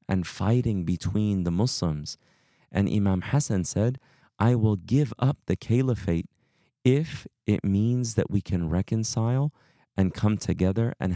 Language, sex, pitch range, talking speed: English, male, 90-115 Hz, 140 wpm